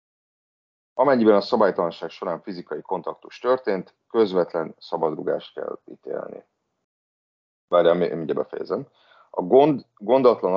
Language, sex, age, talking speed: Hungarian, male, 30-49, 95 wpm